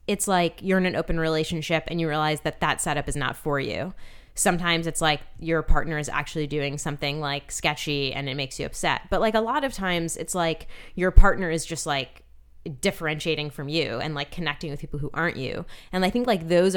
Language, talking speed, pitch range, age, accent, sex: English, 220 wpm, 150-185 Hz, 20-39, American, female